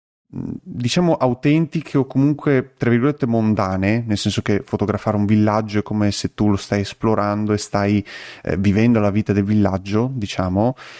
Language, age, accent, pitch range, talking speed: Italian, 30-49, native, 100-120 Hz, 160 wpm